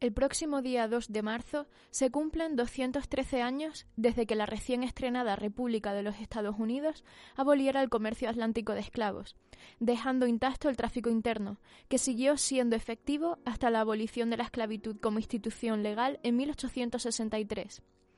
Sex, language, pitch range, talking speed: female, Spanish, 225-270 Hz, 150 wpm